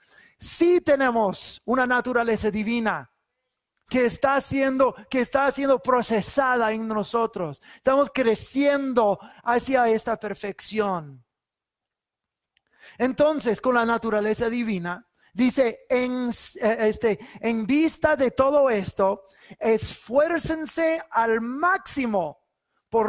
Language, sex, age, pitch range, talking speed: English, male, 30-49, 210-265 Hz, 95 wpm